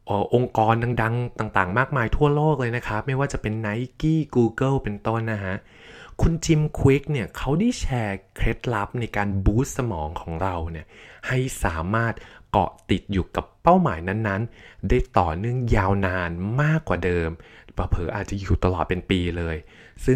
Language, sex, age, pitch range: Thai, male, 20-39, 95-125 Hz